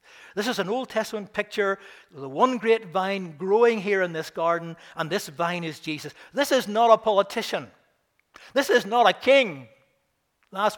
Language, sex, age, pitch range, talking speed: English, male, 60-79, 175-235 Hz, 175 wpm